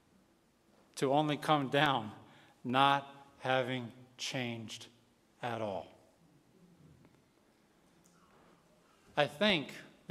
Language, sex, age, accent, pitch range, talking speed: English, male, 40-59, American, 150-185 Hz, 70 wpm